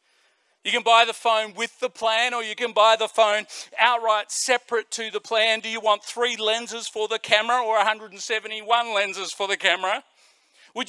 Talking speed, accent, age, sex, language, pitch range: 185 wpm, Australian, 40-59, male, English, 220-255 Hz